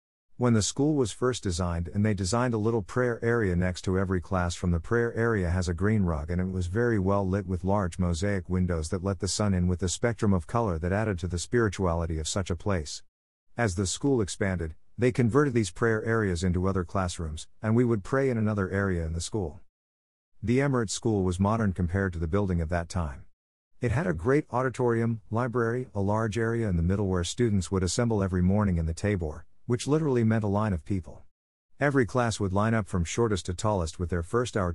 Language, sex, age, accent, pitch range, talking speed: English, male, 50-69, American, 90-115 Hz, 220 wpm